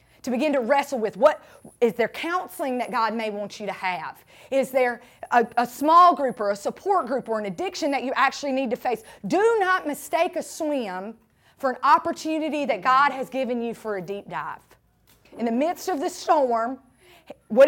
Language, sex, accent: English, female, American